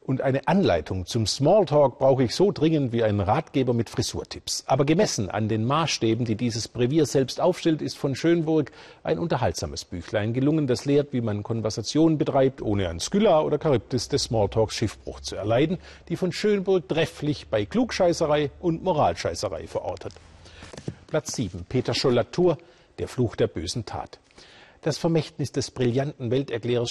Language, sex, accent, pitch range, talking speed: German, male, German, 110-150 Hz, 155 wpm